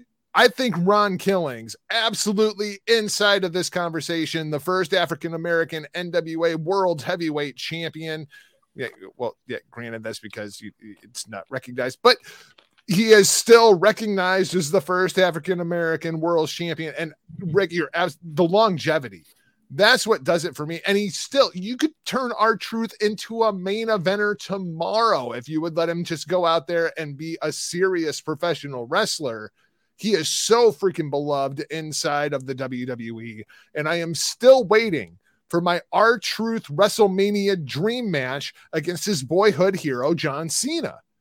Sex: male